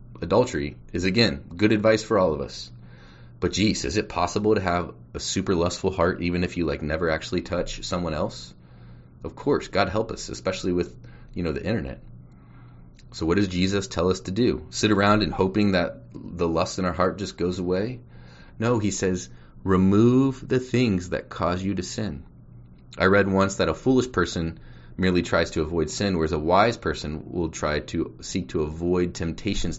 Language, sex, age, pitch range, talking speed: English, male, 30-49, 75-100 Hz, 190 wpm